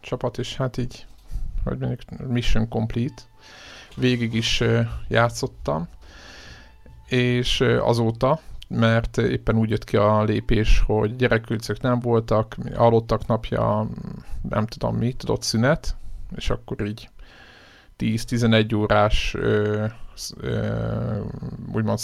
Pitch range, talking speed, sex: 110-125 Hz, 95 wpm, male